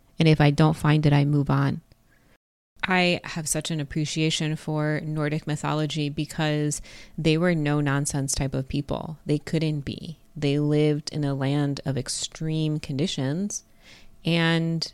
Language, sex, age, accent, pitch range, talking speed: English, female, 20-39, American, 145-160 Hz, 145 wpm